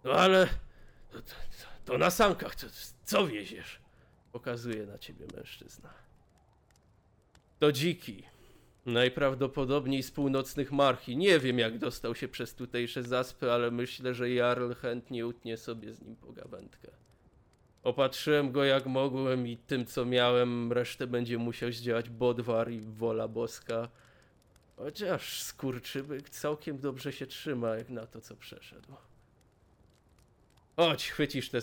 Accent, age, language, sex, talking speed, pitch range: native, 20-39, Polish, male, 130 wpm, 115-135 Hz